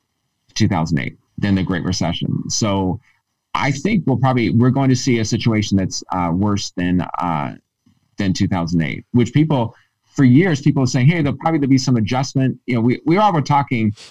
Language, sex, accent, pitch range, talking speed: English, male, American, 105-130 Hz, 185 wpm